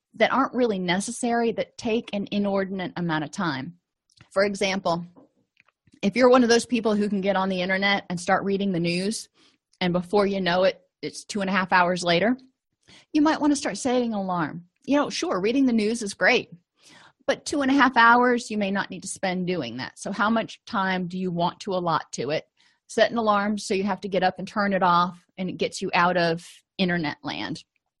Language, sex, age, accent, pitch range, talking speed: English, female, 30-49, American, 180-235 Hz, 220 wpm